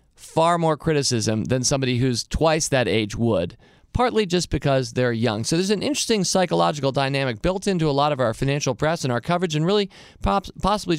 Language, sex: English, male